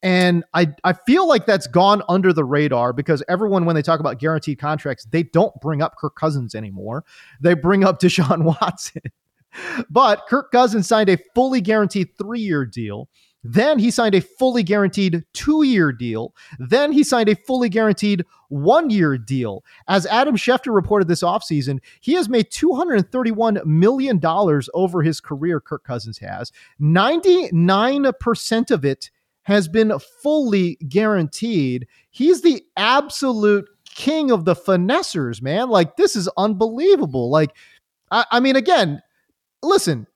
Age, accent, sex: 30-49, American, male